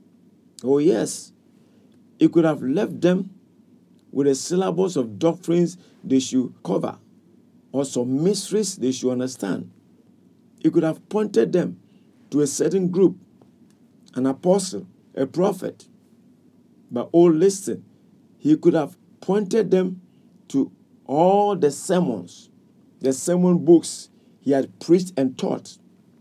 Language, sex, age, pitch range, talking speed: English, male, 50-69, 150-215 Hz, 125 wpm